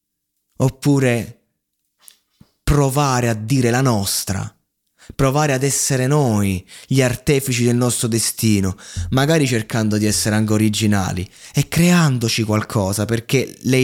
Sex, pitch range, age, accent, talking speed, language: male, 110-135 Hz, 20-39, native, 115 wpm, Italian